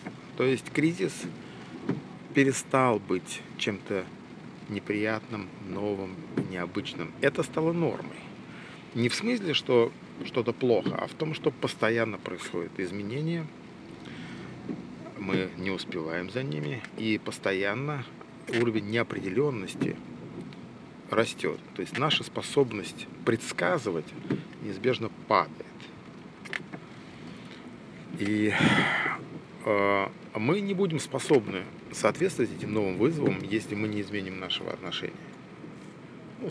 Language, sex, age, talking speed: Russian, male, 40-59, 95 wpm